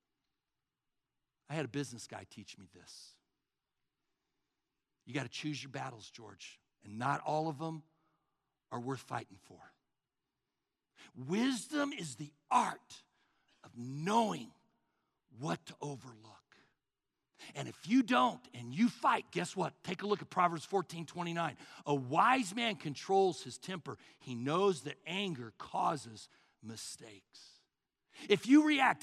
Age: 60-79